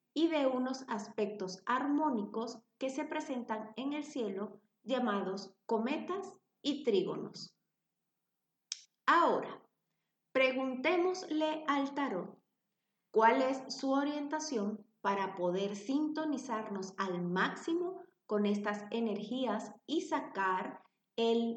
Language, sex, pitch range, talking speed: Spanish, female, 205-265 Hz, 95 wpm